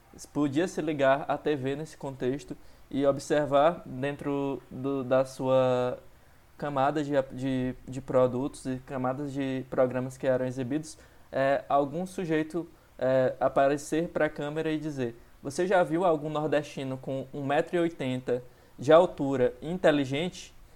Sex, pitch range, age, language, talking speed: male, 135-155 Hz, 20-39, Portuguese, 130 wpm